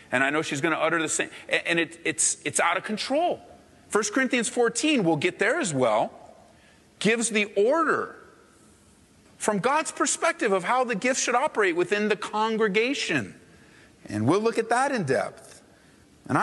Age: 40-59